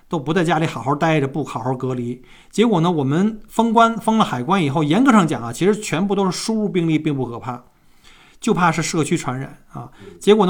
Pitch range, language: 140-185 Hz, Chinese